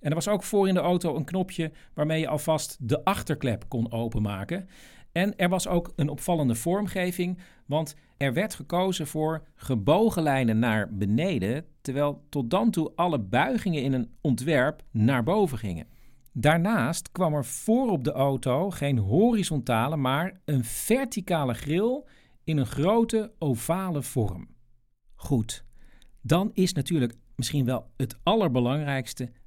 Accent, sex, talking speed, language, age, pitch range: Dutch, male, 145 wpm, Dutch, 50-69, 120-170 Hz